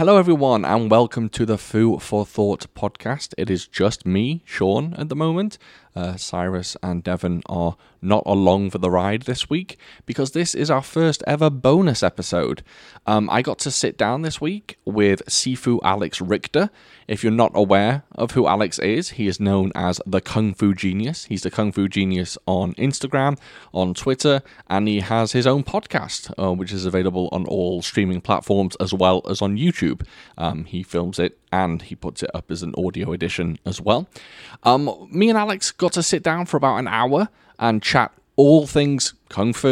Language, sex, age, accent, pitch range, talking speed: English, male, 20-39, British, 95-135 Hz, 190 wpm